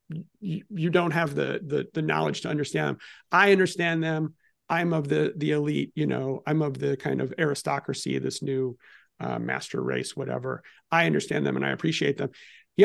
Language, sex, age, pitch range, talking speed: English, male, 40-59, 150-185 Hz, 185 wpm